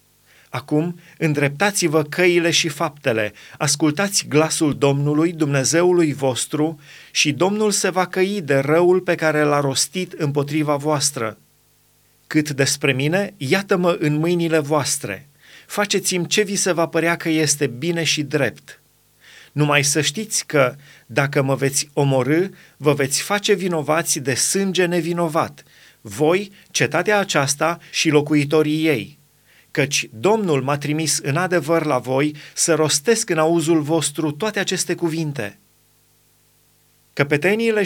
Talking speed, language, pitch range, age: 125 wpm, Romanian, 145-175 Hz, 30-49